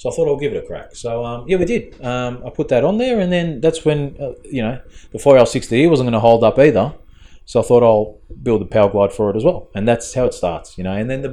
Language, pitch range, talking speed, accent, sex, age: English, 100-120 Hz, 290 wpm, Australian, male, 30-49